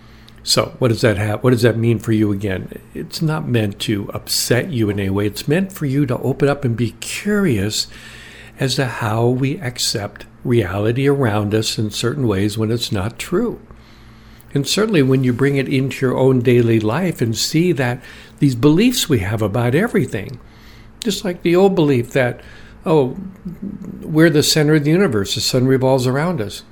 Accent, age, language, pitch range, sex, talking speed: American, 60-79, English, 115-150 Hz, male, 190 wpm